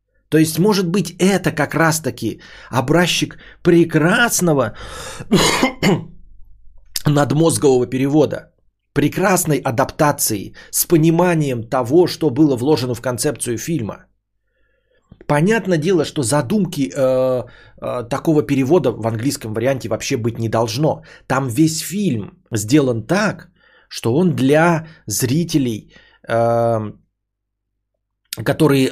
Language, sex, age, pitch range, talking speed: Bulgarian, male, 20-39, 115-160 Hz, 100 wpm